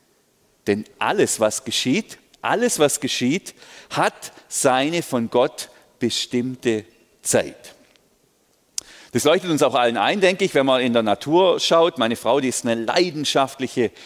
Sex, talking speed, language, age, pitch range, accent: male, 140 wpm, German, 40-59, 120-170 Hz, German